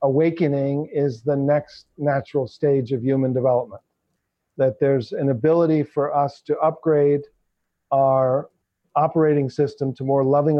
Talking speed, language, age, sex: 130 wpm, English, 50-69, male